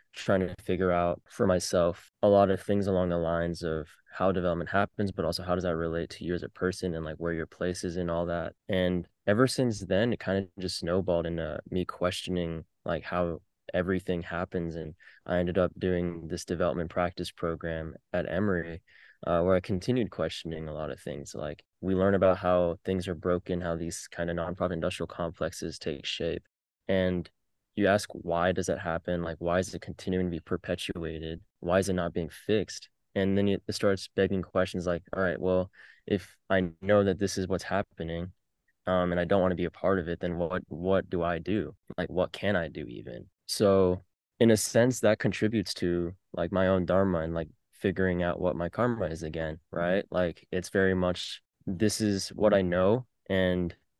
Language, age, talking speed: English, 20-39, 205 wpm